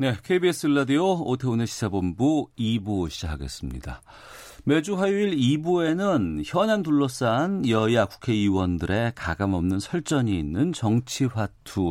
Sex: male